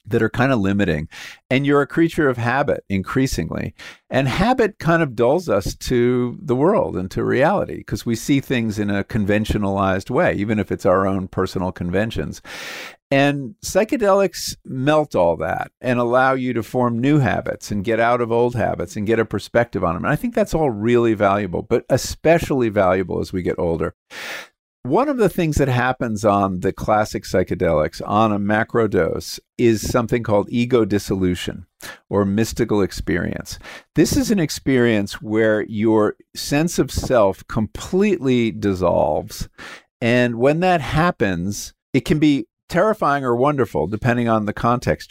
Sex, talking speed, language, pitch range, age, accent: male, 165 wpm, English, 100-130 Hz, 50-69, American